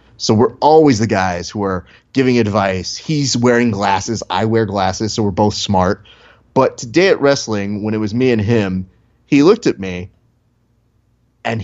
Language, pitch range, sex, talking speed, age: English, 95-120 Hz, male, 175 wpm, 30-49